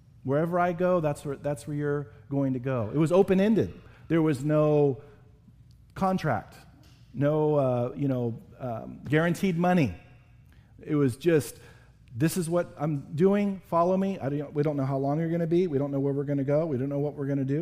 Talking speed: 215 wpm